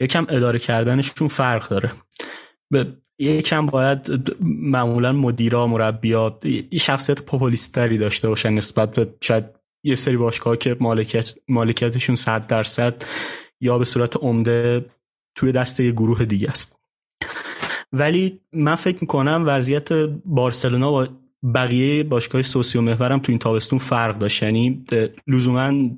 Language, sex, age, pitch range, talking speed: Persian, male, 30-49, 115-140 Hz, 130 wpm